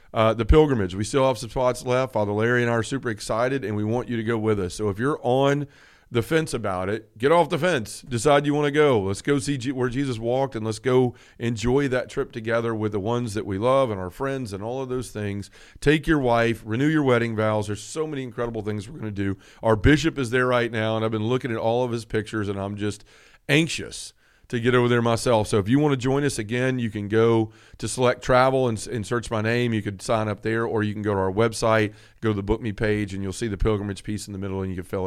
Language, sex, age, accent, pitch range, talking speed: English, male, 40-59, American, 110-130 Hz, 270 wpm